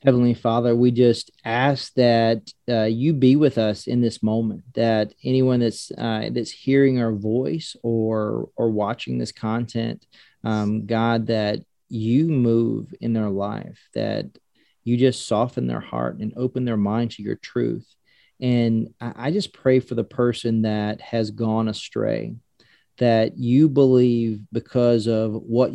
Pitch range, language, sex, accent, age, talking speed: 115-135 Hz, English, male, American, 40-59, 155 wpm